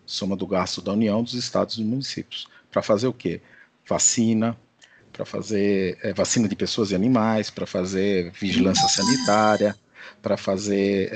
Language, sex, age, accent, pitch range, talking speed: Portuguese, male, 50-69, Brazilian, 100-115 Hz, 145 wpm